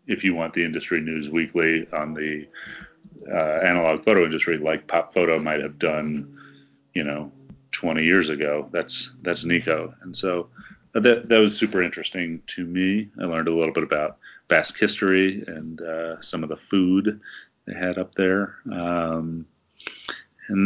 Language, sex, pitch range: English, male, 80-95 Hz